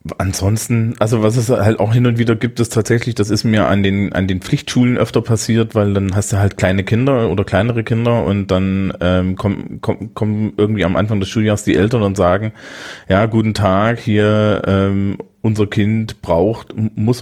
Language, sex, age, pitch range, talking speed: German, male, 30-49, 105-120 Hz, 195 wpm